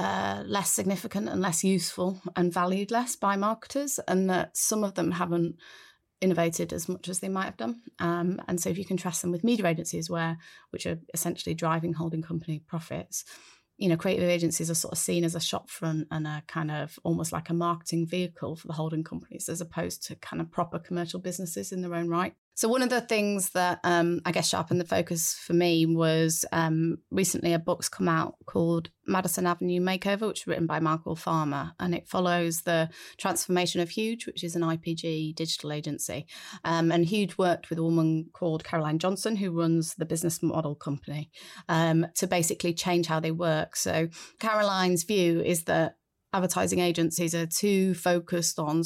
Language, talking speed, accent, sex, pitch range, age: English, 195 wpm, British, female, 165-180 Hz, 30-49